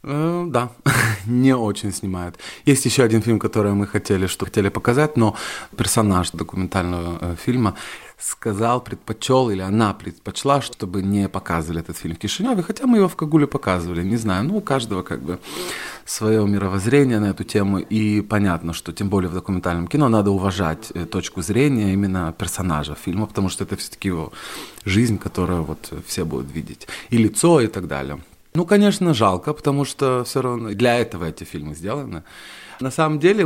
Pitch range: 95-135 Hz